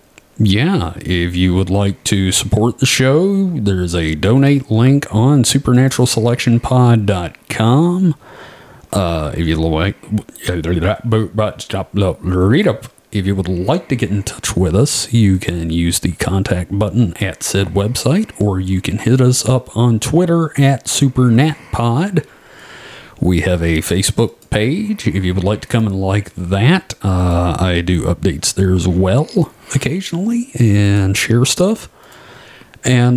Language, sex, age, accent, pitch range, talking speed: English, male, 40-59, American, 95-130 Hz, 135 wpm